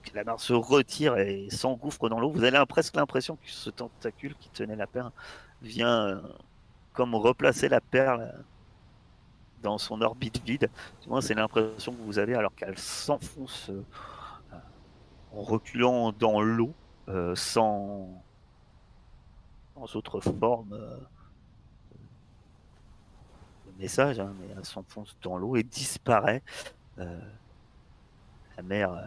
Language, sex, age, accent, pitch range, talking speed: French, male, 40-59, French, 100-125 Hz, 120 wpm